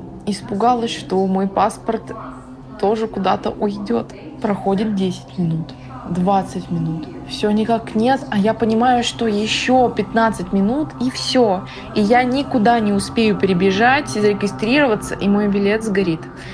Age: 20-39